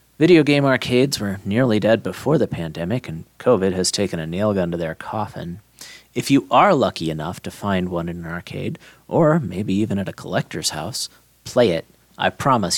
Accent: American